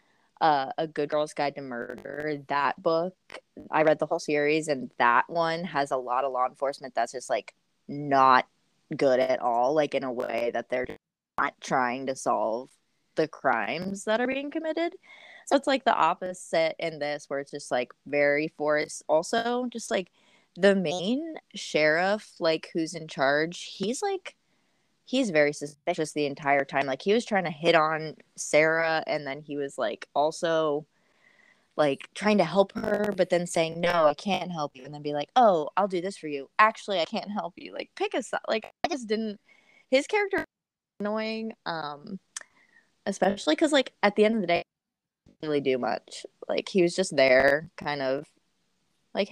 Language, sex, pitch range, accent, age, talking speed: English, female, 145-210 Hz, American, 20-39, 185 wpm